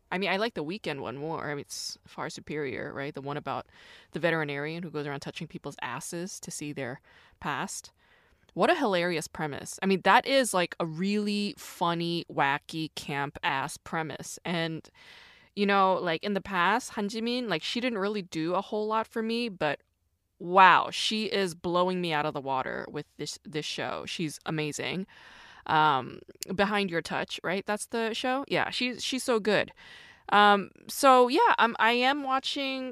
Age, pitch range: 20-39, 165-230 Hz